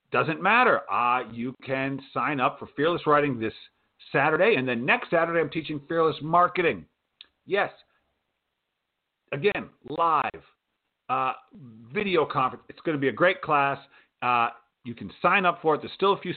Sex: male